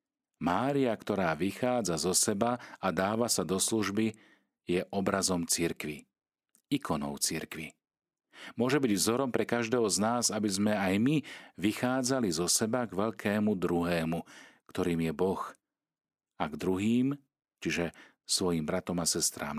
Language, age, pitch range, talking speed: Slovak, 40-59, 85-115 Hz, 130 wpm